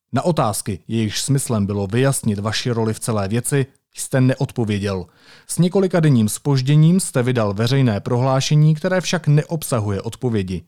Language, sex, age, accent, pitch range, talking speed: Czech, male, 30-49, native, 110-150 Hz, 140 wpm